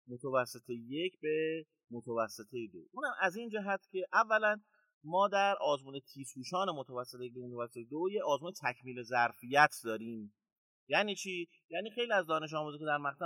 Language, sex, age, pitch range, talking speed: Persian, male, 30-49, 130-200 Hz, 150 wpm